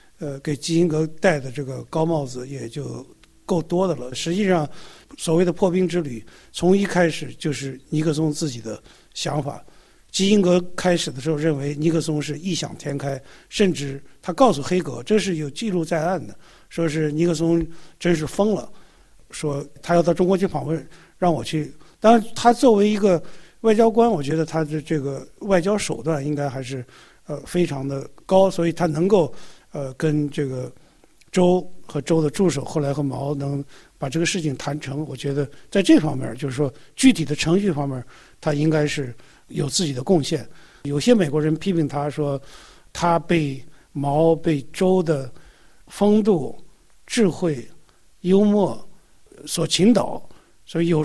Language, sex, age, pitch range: Chinese, male, 50-69, 145-180 Hz